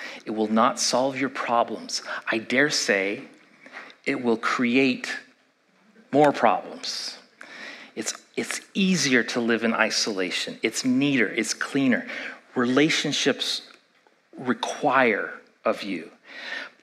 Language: English